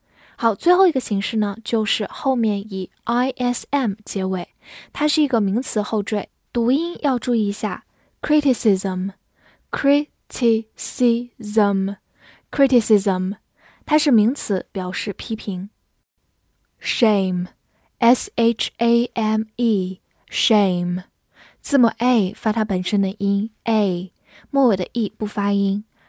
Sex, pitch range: female, 200-250 Hz